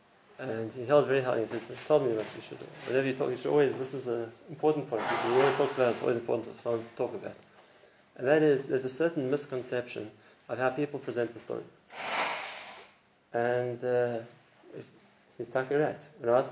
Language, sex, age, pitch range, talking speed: English, male, 20-39, 115-145 Hz, 220 wpm